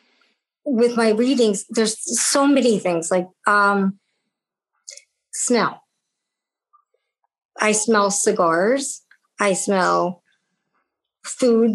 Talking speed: 80 wpm